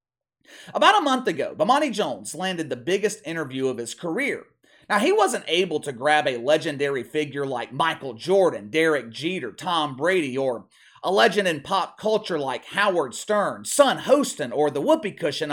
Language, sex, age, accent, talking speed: English, male, 30-49, American, 170 wpm